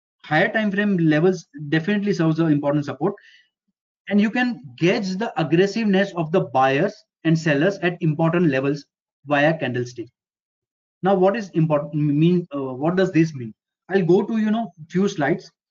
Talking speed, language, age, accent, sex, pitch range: 160 wpm, Tamil, 20-39, native, male, 160-205 Hz